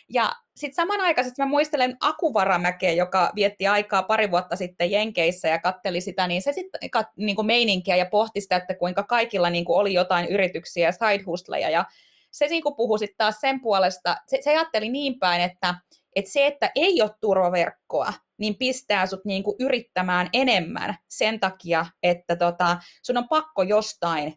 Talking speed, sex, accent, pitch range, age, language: 170 wpm, female, native, 185-250 Hz, 20-39, Finnish